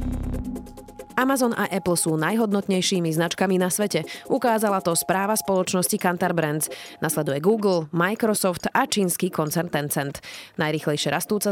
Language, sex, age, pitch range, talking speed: Slovak, female, 20-39, 155-205 Hz, 120 wpm